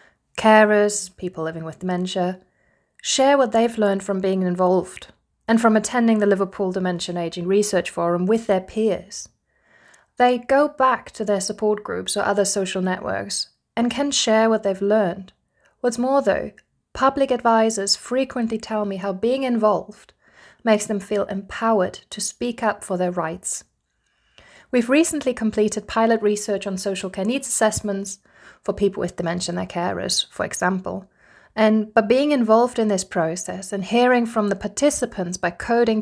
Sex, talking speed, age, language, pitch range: female, 160 wpm, 20-39, English, 190-230 Hz